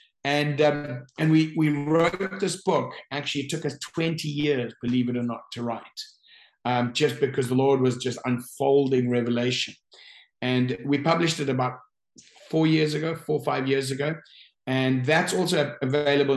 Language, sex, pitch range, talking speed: English, male, 125-150 Hz, 170 wpm